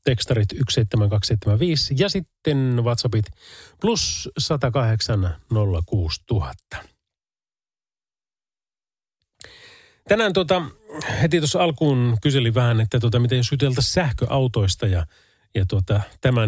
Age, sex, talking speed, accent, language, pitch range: 30-49, male, 85 wpm, native, Finnish, 105-140 Hz